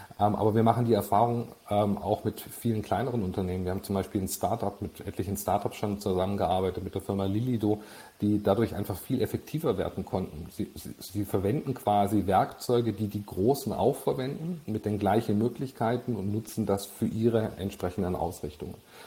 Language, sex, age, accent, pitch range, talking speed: German, male, 40-59, German, 95-115 Hz, 170 wpm